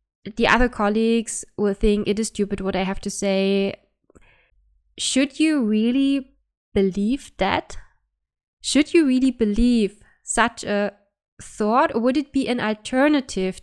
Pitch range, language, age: 195-245 Hz, English, 20-39